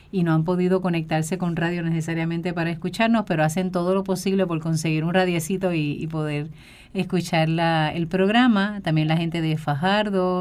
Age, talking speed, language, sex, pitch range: 30-49, 180 wpm, Spanish, female, 170-195 Hz